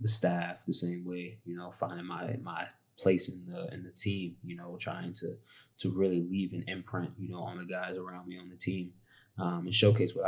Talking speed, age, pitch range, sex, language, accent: 230 wpm, 20-39, 90-105 Hz, male, English, American